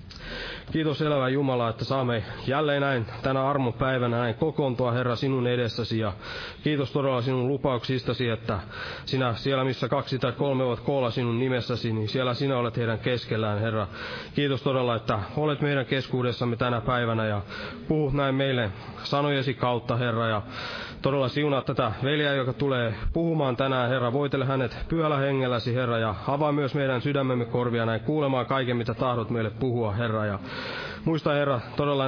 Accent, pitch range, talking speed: native, 120-140 Hz, 160 wpm